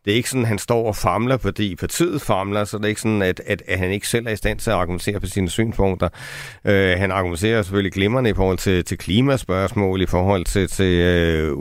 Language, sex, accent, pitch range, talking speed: Danish, male, native, 100-125 Hz, 245 wpm